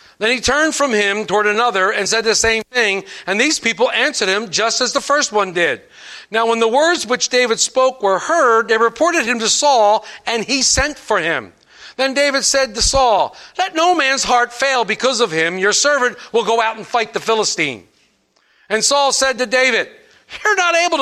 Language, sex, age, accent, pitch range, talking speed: English, male, 50-69, American, 205-265 Hz, 205 wpm